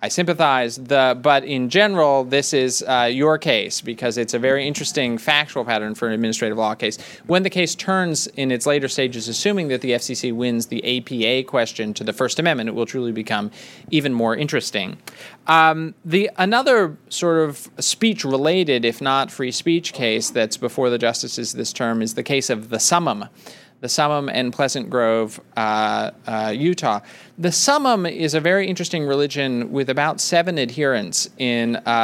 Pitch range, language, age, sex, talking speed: 120-160 Hz, English, 30-49, male, 175 wpm